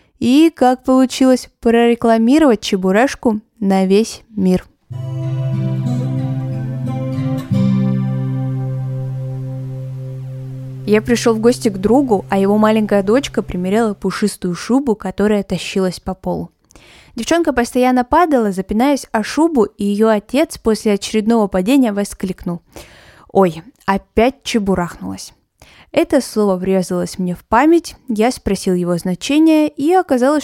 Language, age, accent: Russian, 20-39, native